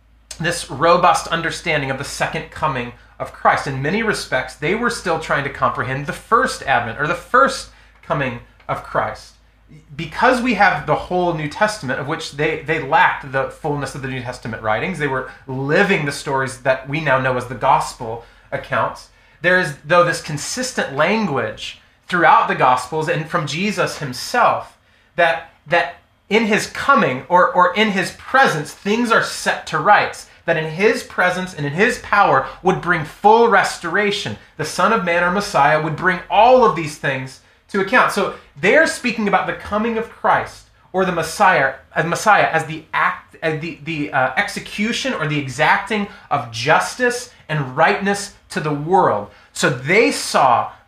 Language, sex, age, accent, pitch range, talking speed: English, male, 30-49, American, 140-190 Hz, 175 wpm